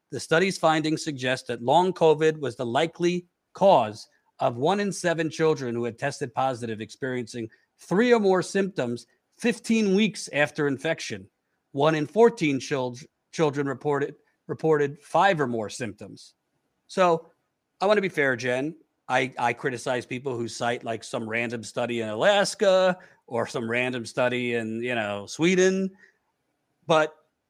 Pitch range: 125-170 Hz